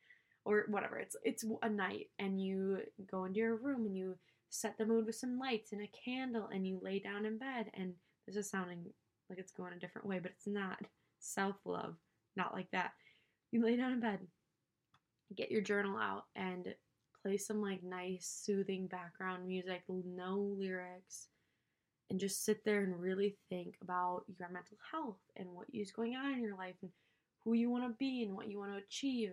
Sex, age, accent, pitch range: female, 10-29, American, 185-225 Hz